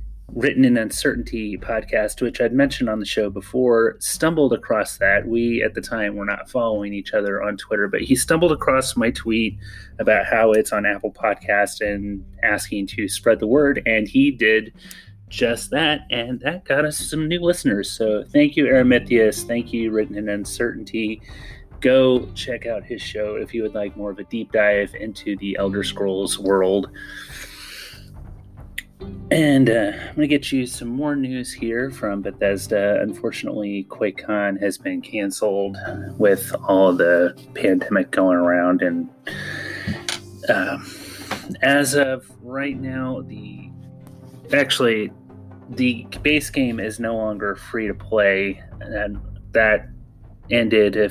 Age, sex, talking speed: 30-49, male, 150 wpm